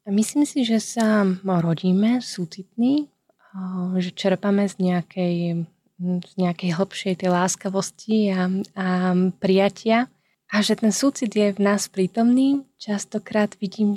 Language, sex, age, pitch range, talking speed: Slovak, female, 20-39, 185-210 Hz, 120 wpm